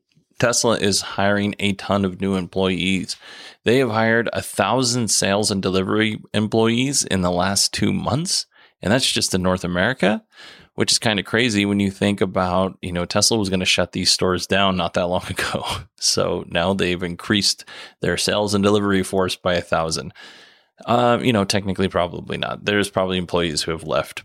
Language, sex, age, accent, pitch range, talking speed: English, male, 20-39, American, 95-115 Hz, 185 wpm